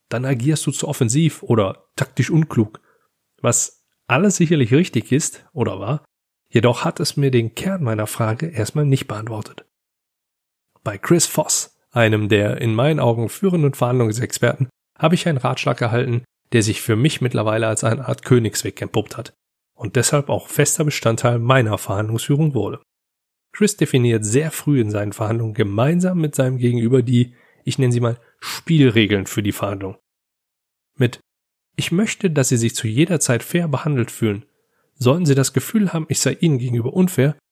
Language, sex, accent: German, male, German